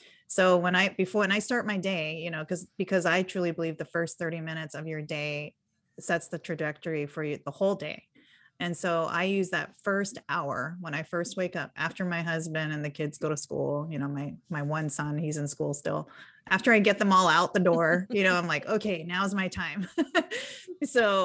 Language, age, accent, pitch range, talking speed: English, 30-49, American, 155-185 Hz, 225 wpm